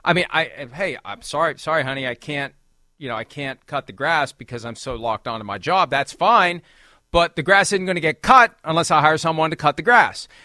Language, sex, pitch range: English, male, 160-225 Hz